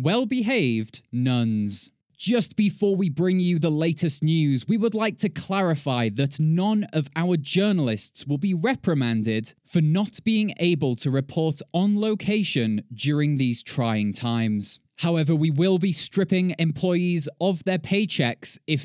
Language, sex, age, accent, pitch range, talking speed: English, male, 20-39, British, 130-185 Hz, 145 wpm